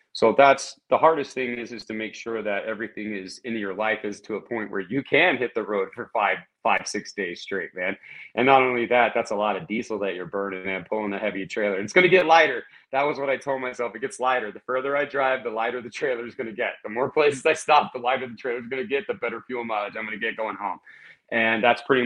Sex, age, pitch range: male, 30-49, 100-125 Hz